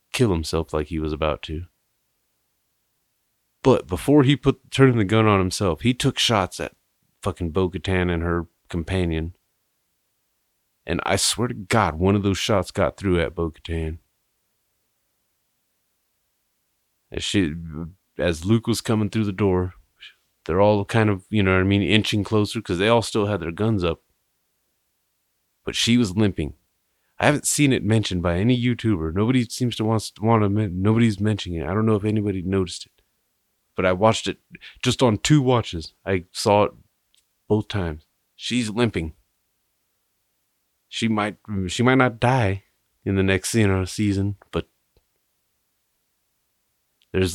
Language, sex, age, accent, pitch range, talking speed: English, male, 30-49, American, 90-110 Hz, 155 wpm